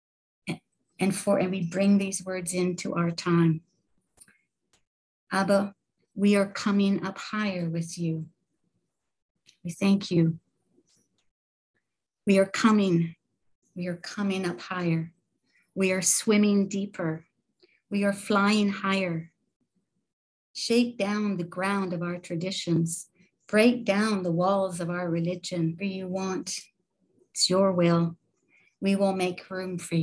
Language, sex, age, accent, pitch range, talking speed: English, female, 60-79, American, 175-200 Hz, 125 wpm